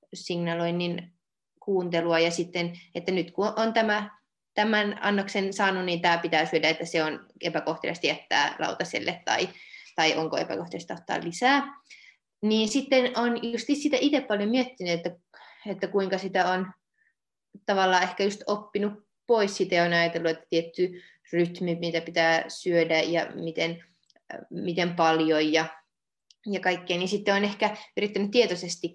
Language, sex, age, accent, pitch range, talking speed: Finnish, female, 20-39, native, 170-210 Hz, 140 wpm